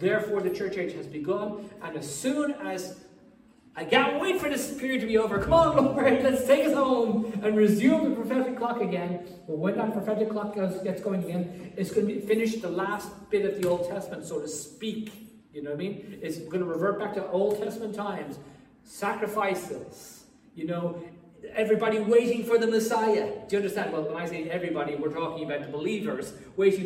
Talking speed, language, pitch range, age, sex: 200 wpm, English, 160-215 Hz, 40-59, male